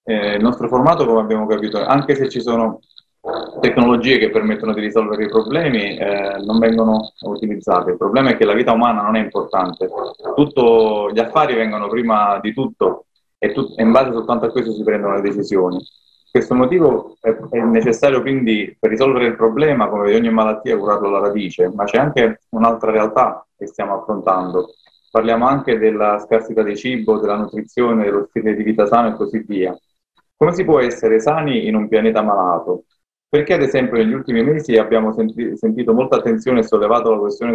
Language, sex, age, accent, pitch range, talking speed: Italian, male, 30-49, native, 105-120 Hz, 185 wpm